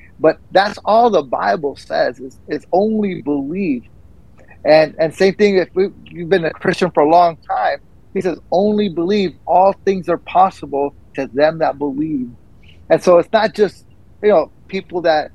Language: English